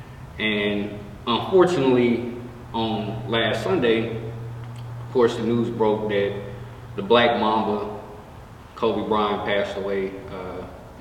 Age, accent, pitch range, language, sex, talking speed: 20-39, American, 100-120 Hz, English, male, 105 wpm